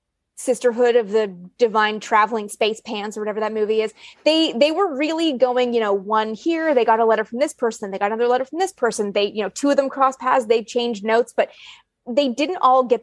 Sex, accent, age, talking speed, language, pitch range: female, American, 20-39, 235 wpm, English, 215-260 Hz